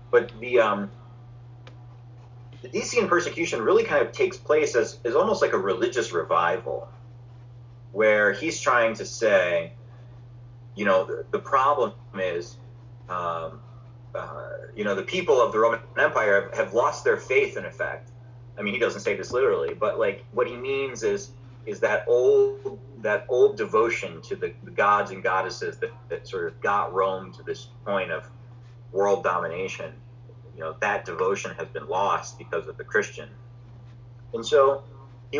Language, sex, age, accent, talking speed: English, male, 30-49, American, 165 wpm